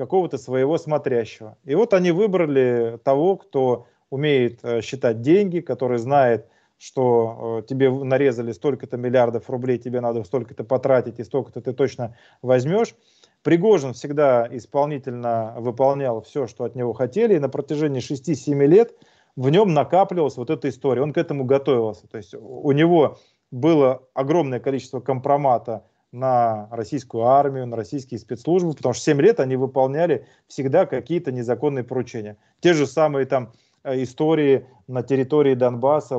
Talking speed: 140 wpm